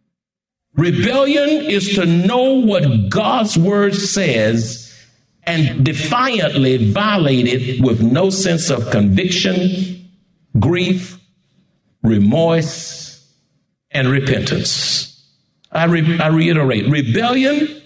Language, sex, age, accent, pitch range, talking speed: English, male, 60-79, American, 135-195 Hz, 85 wpm